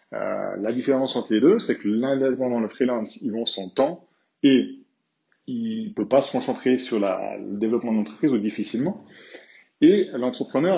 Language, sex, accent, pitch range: French, male, French, 105-150 Hz